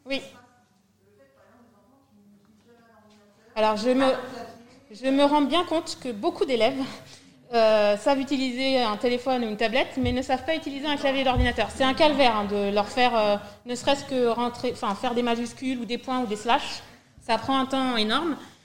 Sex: female